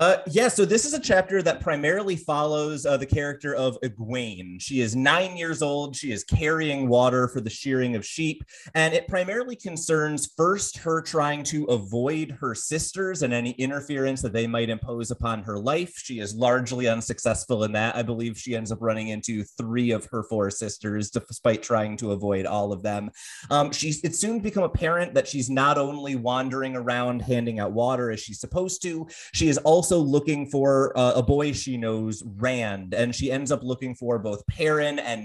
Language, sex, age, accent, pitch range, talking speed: English, male, 30-49, American, 115-145 Hz, 190 wpm